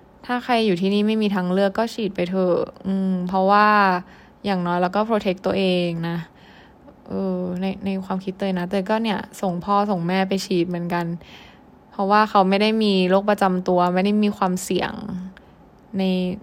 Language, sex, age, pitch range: Thai, female, 20-39, 180-210 Hz